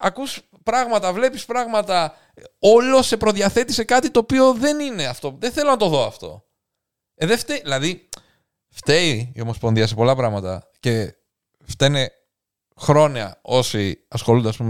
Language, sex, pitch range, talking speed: Greek, male, 105-150 Hz, 145 wpm